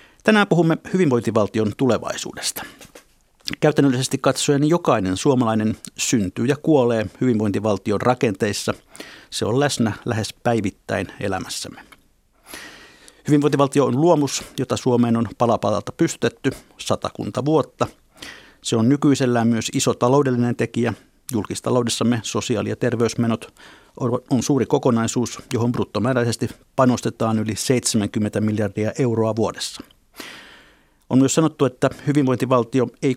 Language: Finnish